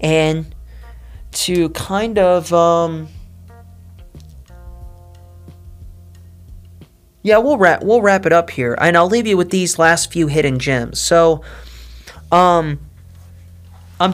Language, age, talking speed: English, 30-49, 110 wpm